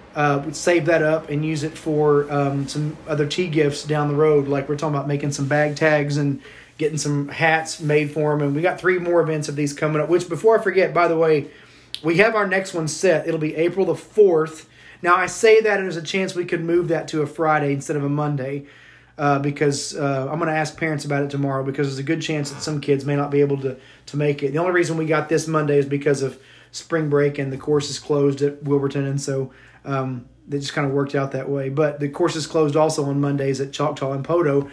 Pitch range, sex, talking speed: 140-165 Hz, male, 255 wpm